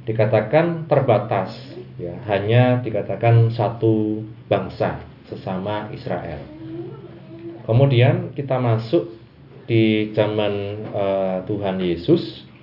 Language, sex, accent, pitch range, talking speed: Indonesian, male, native, 100-120 Hz, 80 wpm